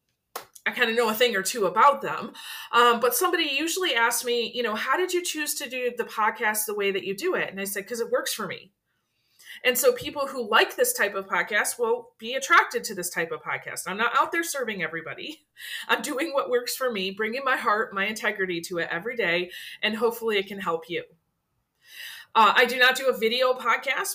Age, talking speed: 30-49, 230 wpm